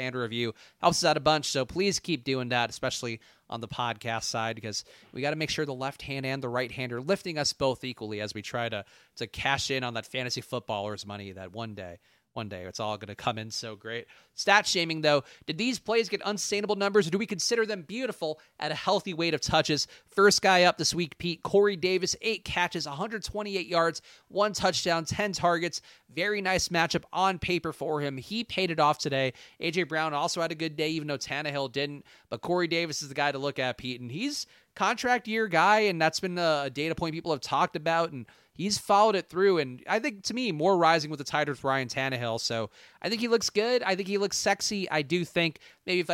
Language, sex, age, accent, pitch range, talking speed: English, male, 30-49, American, 130-185 Hz, 230 wpm